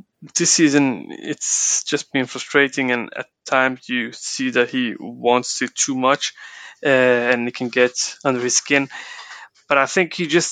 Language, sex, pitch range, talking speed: English, male, 120-140 Hz, 170 wpm